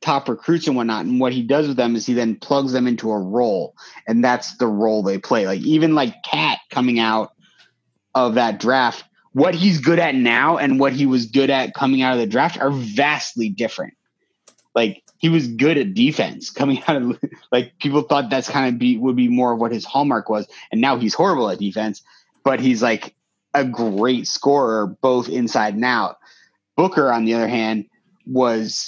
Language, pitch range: English, 115-135 Hz